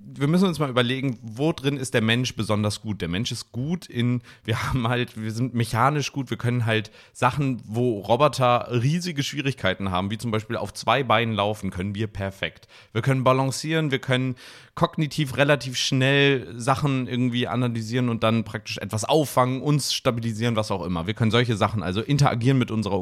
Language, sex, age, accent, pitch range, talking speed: German, male, 30-49, German, 105-130 Hz, 190 wpm